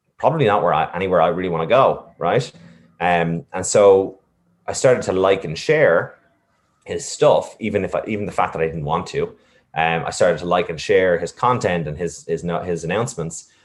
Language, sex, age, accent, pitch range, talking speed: English, male, 20-39, Irish, 85-100 Hz, 205 wpm